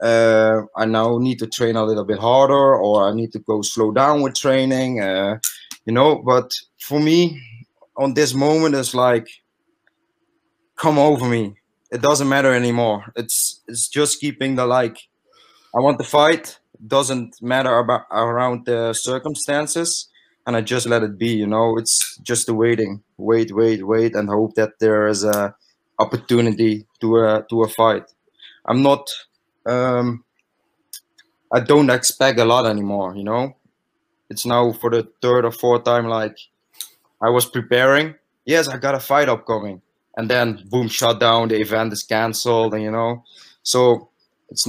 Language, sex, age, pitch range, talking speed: English, male, 20-39, 110-130 Hz, 165 wpm